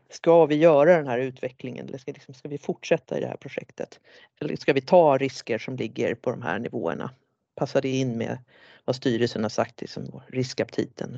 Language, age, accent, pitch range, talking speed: Swedish, 40-59, native, 135-165 Hz, 195 wpm